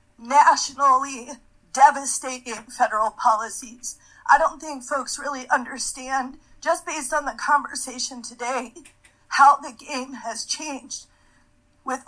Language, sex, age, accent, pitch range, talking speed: English, female, 40-59, American, 255-295 Hz, 110 wpm